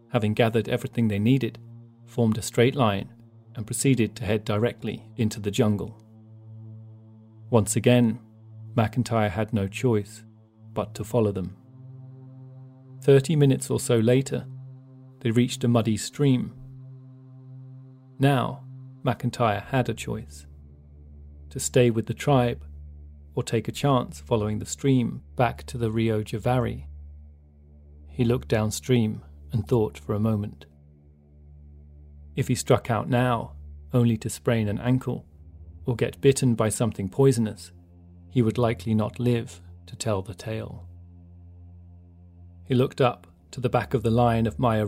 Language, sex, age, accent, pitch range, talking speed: English, male, 40-59, British, 85-125 Hz, 140 wpm